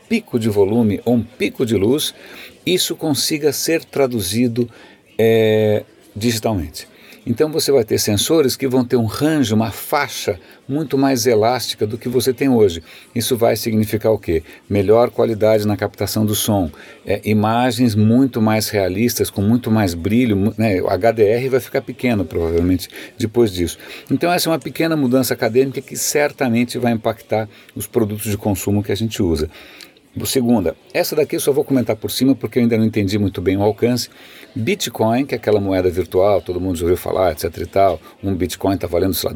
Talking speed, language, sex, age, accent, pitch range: 185 wpm, Portuguese, male, 60-79, Brazilian, 105-125 Hz